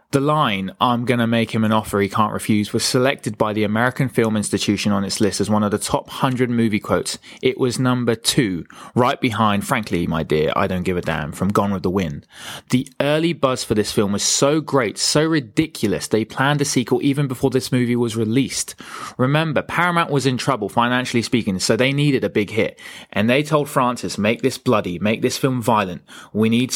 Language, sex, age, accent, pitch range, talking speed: English, male, 20-39, British, 105-130 Hz, 215 wpm